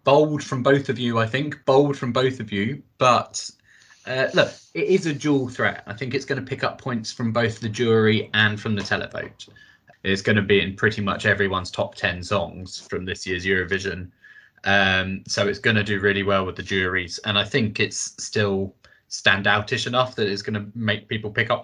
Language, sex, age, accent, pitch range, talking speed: English, male, 20-39, British, 105-130 Hz, 215 wpm